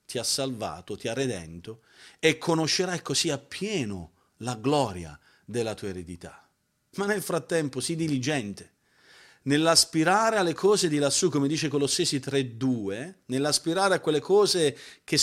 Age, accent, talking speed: 40-59, native, 135 wpm